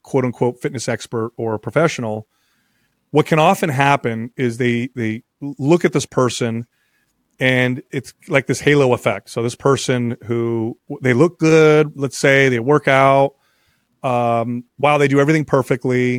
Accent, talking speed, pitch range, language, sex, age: American, 150 wpm, 120-145 Hz, English, male, 30-49